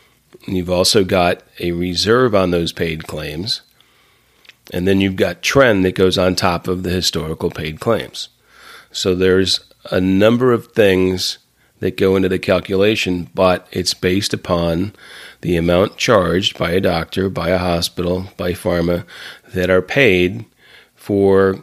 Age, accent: 40-59, American